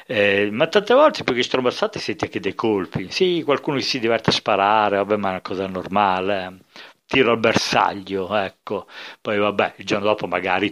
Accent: native